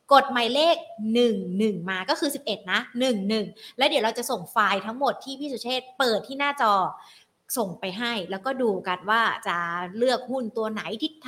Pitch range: 220-265 Hz